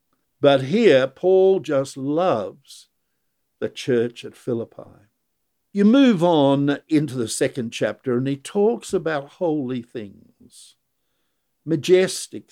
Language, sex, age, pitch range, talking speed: English, male, 60-79, 120-185 Hz, 110 wpm